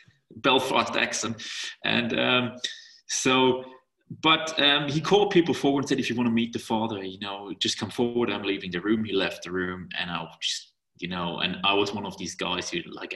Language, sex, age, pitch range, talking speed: English, male, 30-49, 105-175 Hz, 215 wpm